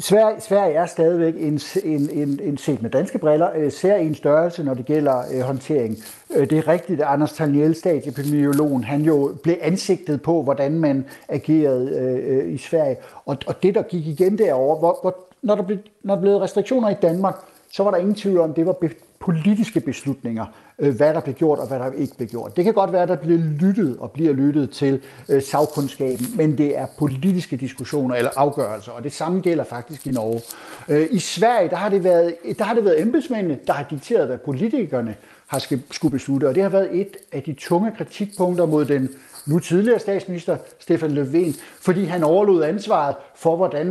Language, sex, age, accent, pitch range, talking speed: Danish, male, 60-79, native, 140-180 Hz, 200 wpm